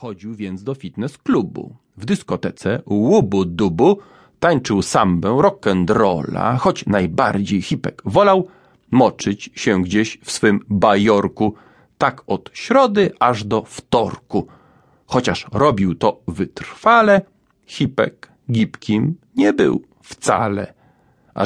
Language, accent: English, Polish